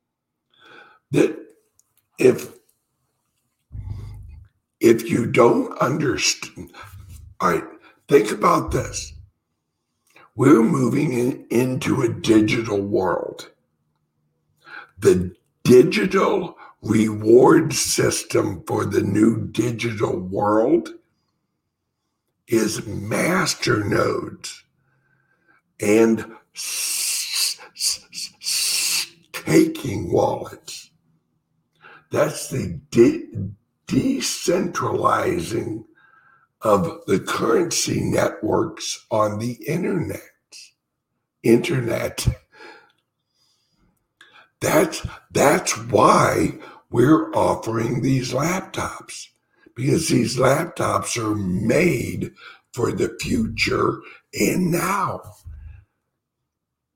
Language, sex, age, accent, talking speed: English, male, 60-79, American, 65 wpm